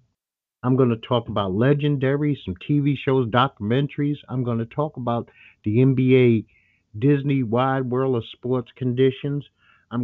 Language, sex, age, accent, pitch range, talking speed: English, male, 60-79, American, 105-135 Hz, 135 wpm